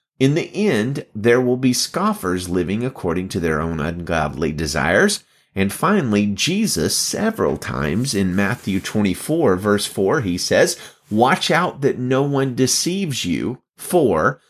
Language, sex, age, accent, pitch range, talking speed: English, male, 30-49, American, 95-140 Hz, 140 wpm